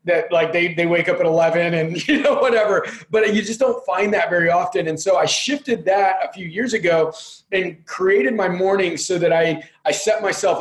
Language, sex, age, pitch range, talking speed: English, male, 20-39, 185-240 Hz, 220 wpm